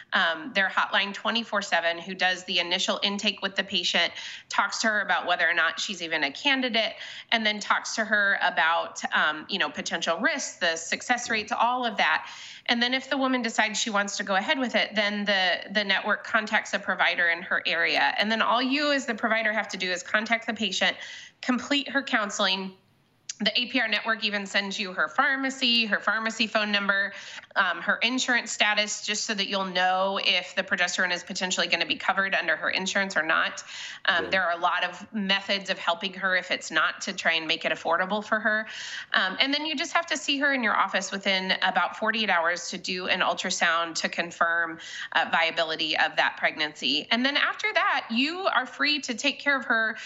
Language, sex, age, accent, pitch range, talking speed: English, female, 30-49, American, 185-235 Hz, 210 wpm